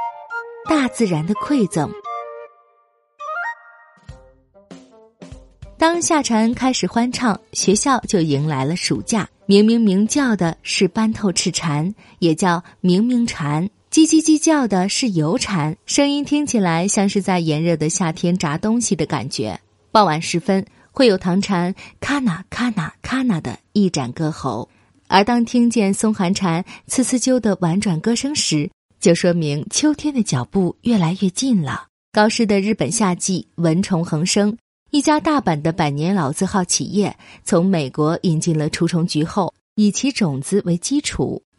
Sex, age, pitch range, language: female, 20-39, 165-225 Hz, Chinese